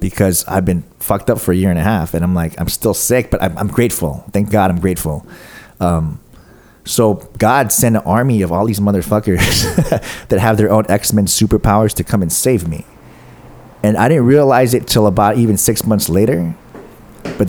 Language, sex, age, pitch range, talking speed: English, male, 30-49, 95-115 Hz, 200 wpm